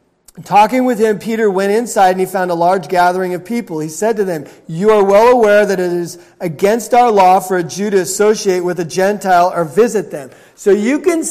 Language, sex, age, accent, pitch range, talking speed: English, male, 40-59, American, 185-230 Hz, 225 wpm